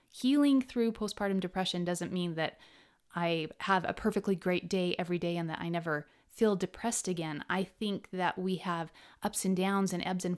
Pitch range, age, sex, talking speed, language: 175-215 Hz, 30-49, female, 190 wpm, English